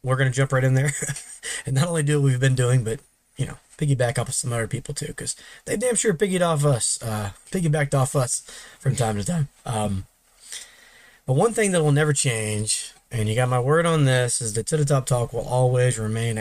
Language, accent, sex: English, American, male